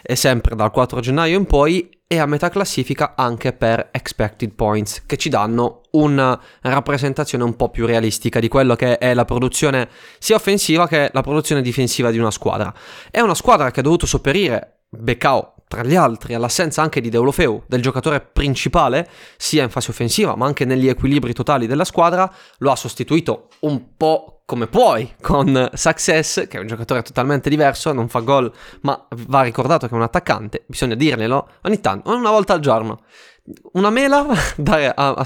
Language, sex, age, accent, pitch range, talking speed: Italian, male, 20-39, native, 120-155 Hz, 180 wpm